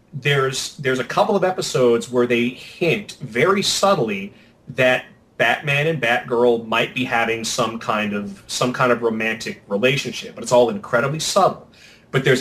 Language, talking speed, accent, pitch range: English, 160 wpm, American, 115-155 Hz